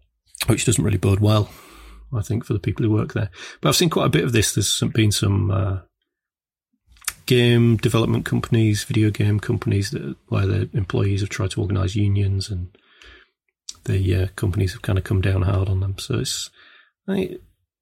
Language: English